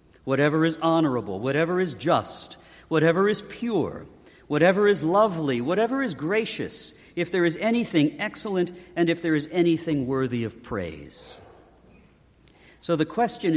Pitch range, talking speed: 140-190 Hz, 135 wpm